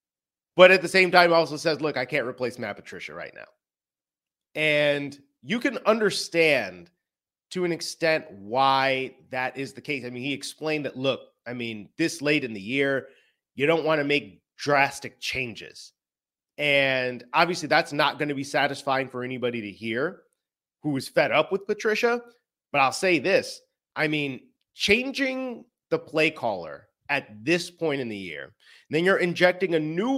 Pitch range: 125-185 Hz